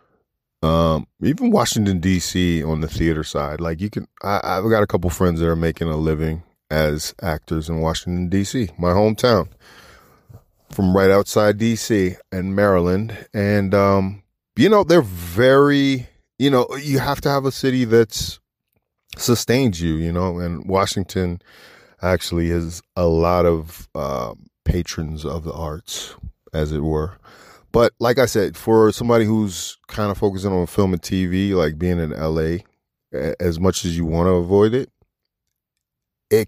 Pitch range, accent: 85-105 Hz, American